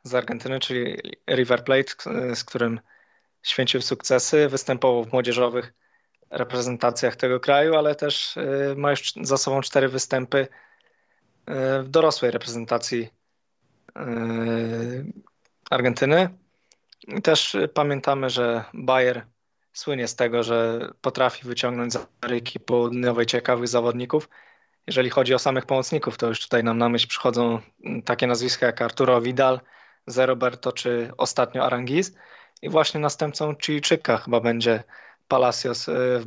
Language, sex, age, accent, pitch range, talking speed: Polish, male, 20-39, native, 120-135 Hz, 120 wpm